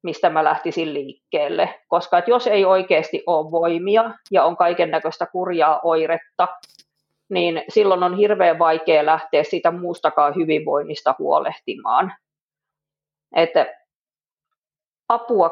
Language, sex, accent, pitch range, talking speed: Finnish, female, native, 160-200 Hz, 100 wpm